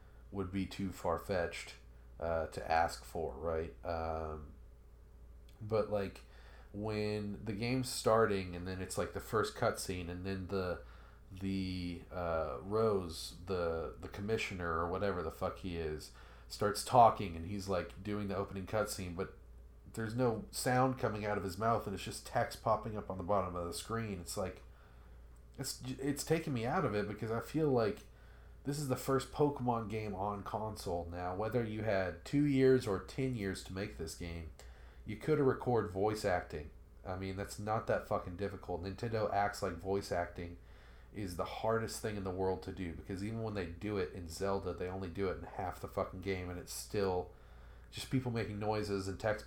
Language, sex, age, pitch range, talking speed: English, male, 40-59, 85-110 Hz, 190 wpm